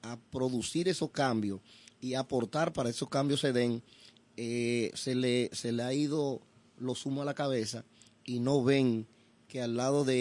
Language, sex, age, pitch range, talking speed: Spanish, male, 30-49, 115-150 Hz, 175 wpm